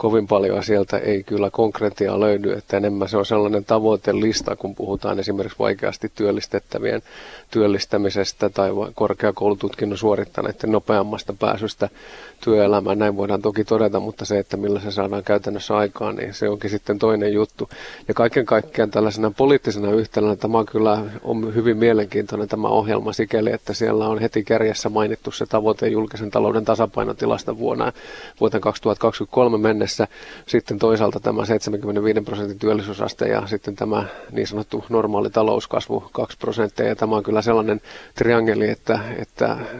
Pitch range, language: 105-110 Hz, Finnish